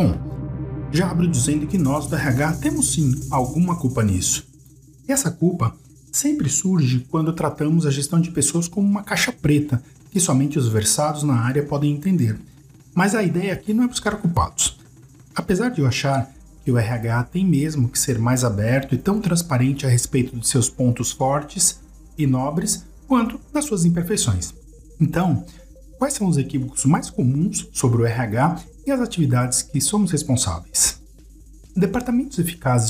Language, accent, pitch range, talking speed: Portuguese, Brazilian, 130-180 Hz, 165 wpm